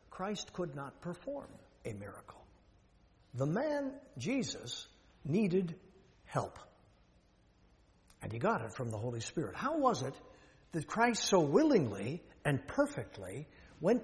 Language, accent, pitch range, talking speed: English, American, 125-195 Hz, 125 wpm